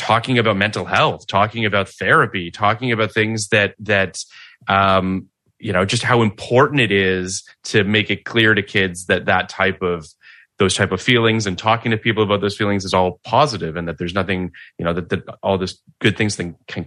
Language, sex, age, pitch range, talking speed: English, male, 30-49, 95-120 Hz, 205 wpm